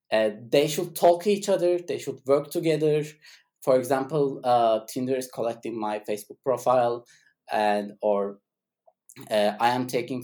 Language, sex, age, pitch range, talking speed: English, male, 20-39, 115-145 Hz, 150 wpm